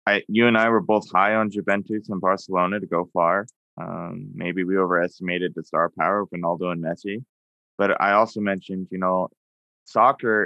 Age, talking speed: 20-39, 180 wpm